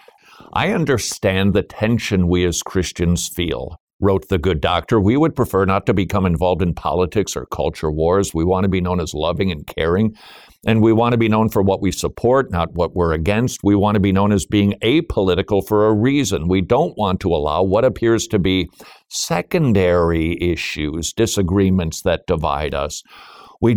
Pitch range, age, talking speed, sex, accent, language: 85-105 Hz, 50-69, 185 wpm, male, American, English